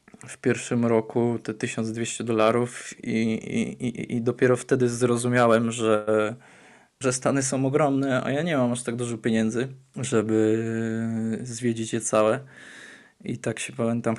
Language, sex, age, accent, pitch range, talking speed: Polish, male, 20-39, native, 110-125 Hz, 140 wpm